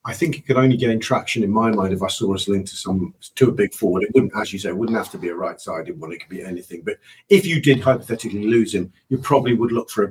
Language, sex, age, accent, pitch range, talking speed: English, male, 40-59, British, 95-125 Hz, 305 wpm